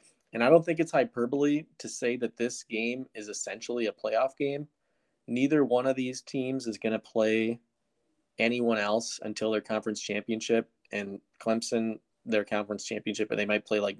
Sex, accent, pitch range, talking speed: male, American, 105-120 Hz, 175 wpm